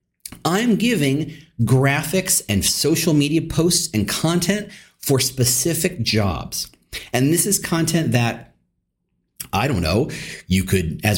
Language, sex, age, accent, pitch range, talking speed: English, male, 40-59, American, 110-160 Hz, 125 wpm